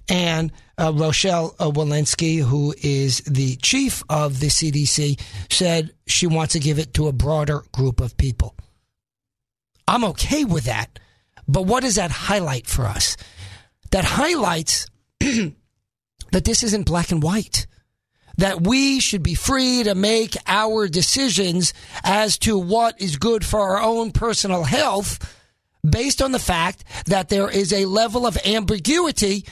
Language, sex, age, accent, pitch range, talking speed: English, male, 40-59, American, 140-205 Hz, 145 wpm